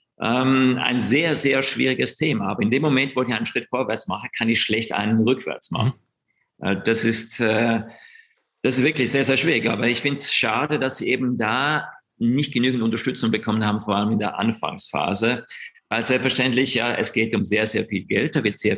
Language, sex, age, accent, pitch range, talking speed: German, male, 50-69, German, 110-130 Hz, 195 wpm